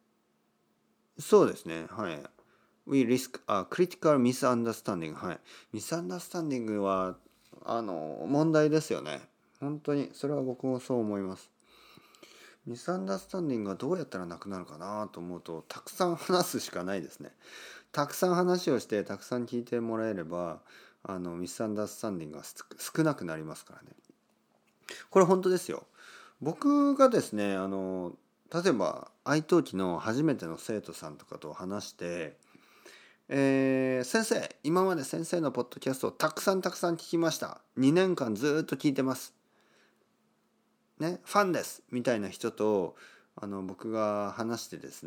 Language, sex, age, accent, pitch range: Japanese, male, 40-59, native, 105-170 Hz